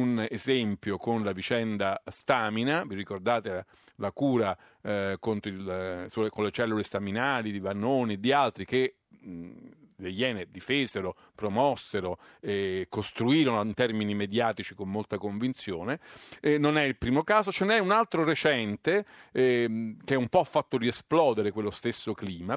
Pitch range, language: 105-140 Hz, Italian